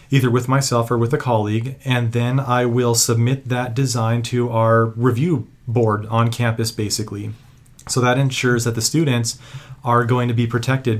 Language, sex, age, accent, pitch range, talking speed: English, male, 40-59, American, 115-130 Hz, 175 wpm